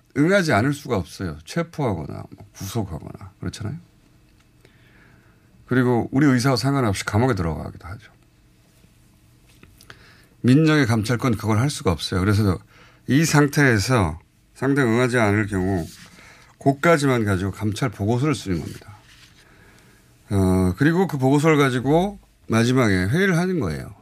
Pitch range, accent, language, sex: 95-145 Hz, native, Korean, male